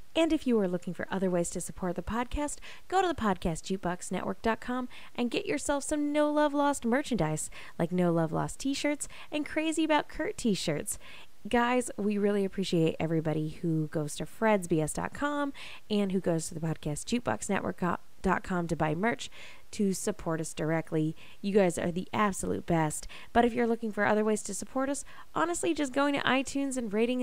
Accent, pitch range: American, 165-235 Hz